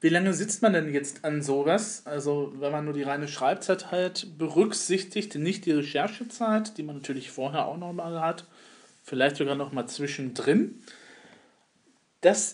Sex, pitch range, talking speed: male, 130-170 Hz, 155 wpm